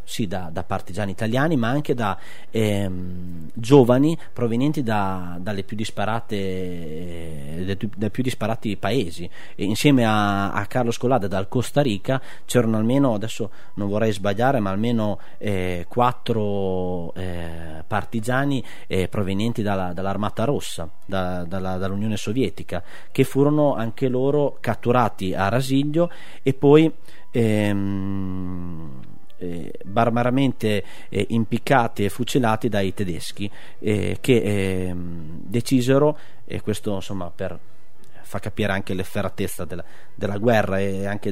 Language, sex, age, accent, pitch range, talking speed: Italian, male, 30-49, native, 95-120 Hz, 125 wpm